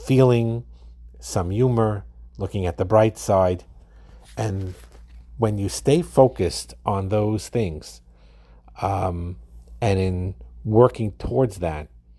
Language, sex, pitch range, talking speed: English, male, 75-120 Hz, 110 wpm